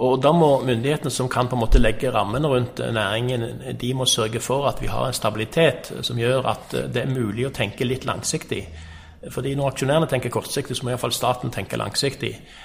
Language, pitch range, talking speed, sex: English, 110-130 Hz, 210 wpm, male